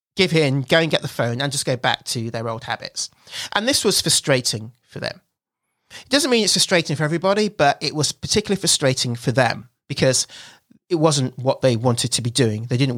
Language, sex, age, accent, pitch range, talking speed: English, male, 30-49, British, 135-210 Hz, 215 wpm